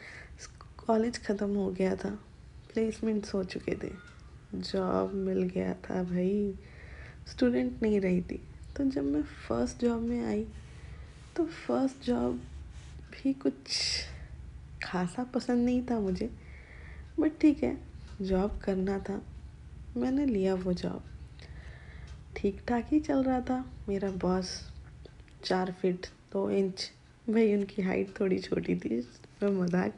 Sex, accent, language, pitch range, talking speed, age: female, native, Hindi, 175-240 Hz, 130 wpm, 20-39